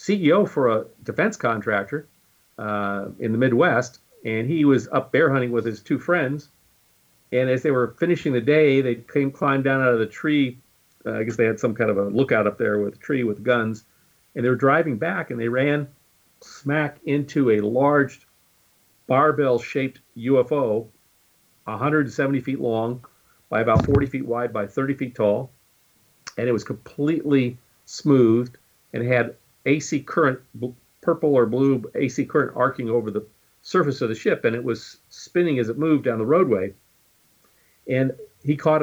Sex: male